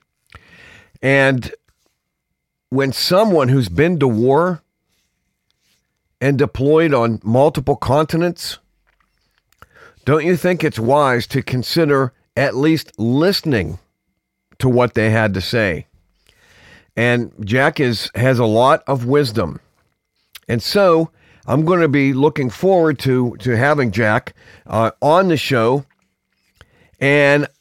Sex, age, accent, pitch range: male, 50-69, American, 115-145 Hz